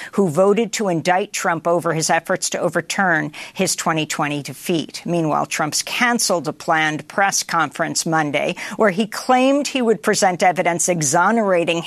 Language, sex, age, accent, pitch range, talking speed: English, female, 50-69, American, 155-180 Hz, 145 wpm